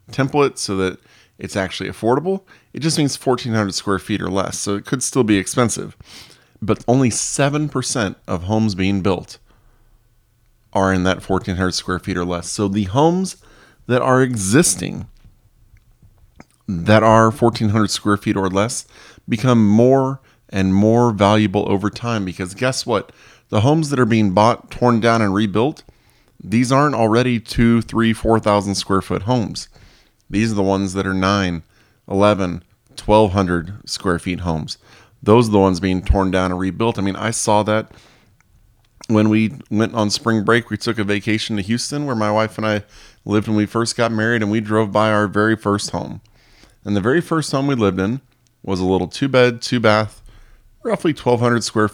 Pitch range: 100-120 Hz